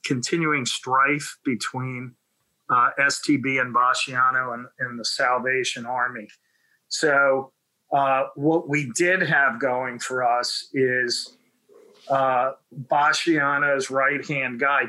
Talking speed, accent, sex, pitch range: 105 wpm, American, male, 130-150 Hz